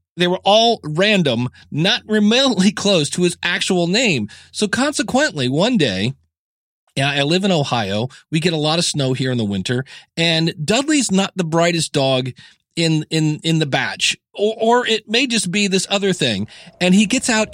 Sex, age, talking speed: male, 40-59, 180 wpm